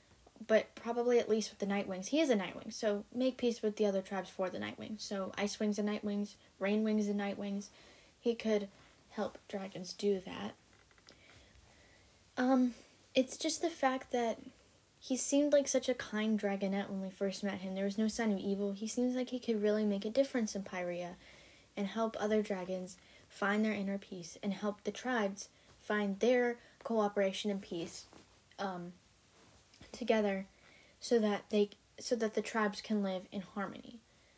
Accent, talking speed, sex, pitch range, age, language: American, 175 wpm, female, 200-245 Hz, 10-29, English